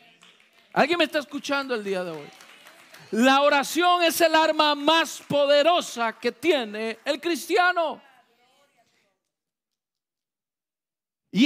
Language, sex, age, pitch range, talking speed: Spanish, male, 50-69, 240-330 Hz, 105 wpm